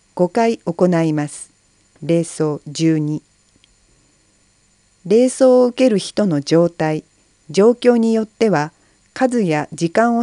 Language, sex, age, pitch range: Japanese, female, 40-59, 140-220 Hz